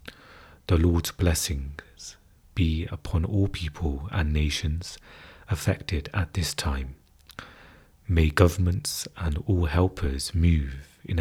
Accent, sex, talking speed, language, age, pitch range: British, male, 105 wpm, English, 30-49, 75-90 Hz